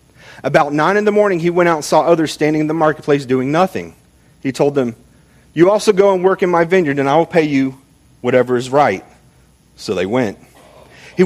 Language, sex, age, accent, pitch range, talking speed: English, male, 40-59, American, 135-175 Hz, 215 wpm